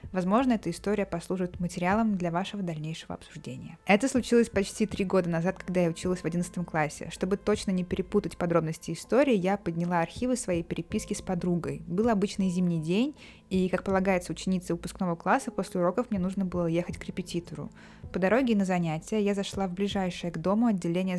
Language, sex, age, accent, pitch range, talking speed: Russian, female, 20-39, native, 175-210 Hz, 180 wpm